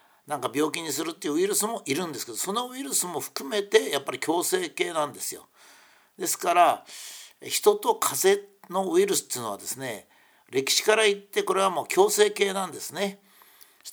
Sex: male